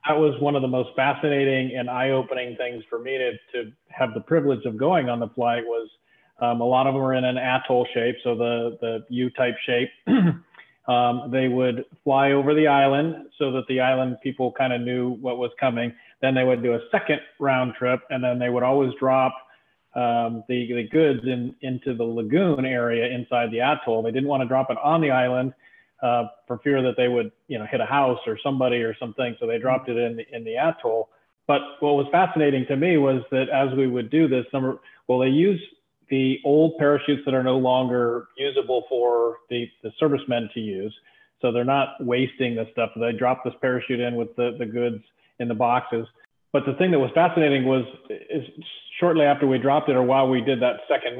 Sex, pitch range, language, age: male, 120-140 Hz, English, 30-49